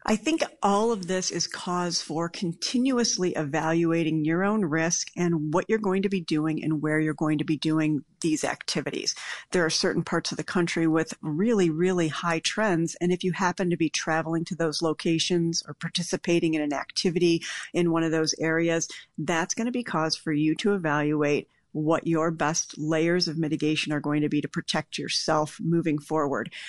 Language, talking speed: English, 190 wpm